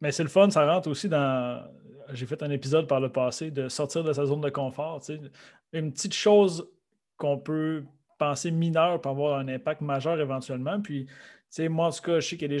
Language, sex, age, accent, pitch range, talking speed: French, male, 30-49, Canadian, 135-160 Hz, 220 wpm